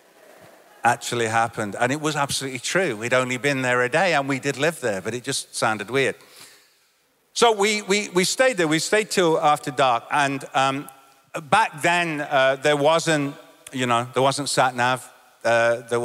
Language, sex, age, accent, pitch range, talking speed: English, male, 50-69, British, 120-170 Hz, 185 wpm